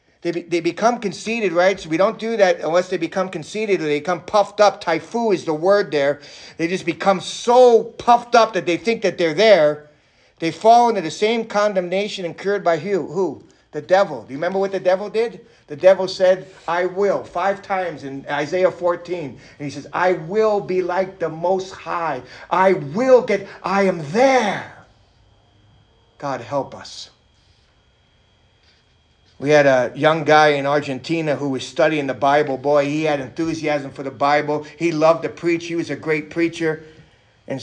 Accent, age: American, 50-69